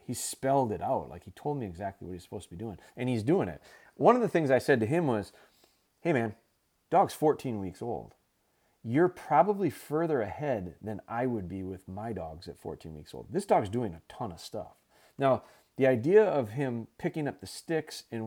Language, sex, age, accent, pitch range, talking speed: English, male, 30-49, American, 100-135 Hz, 215 wpm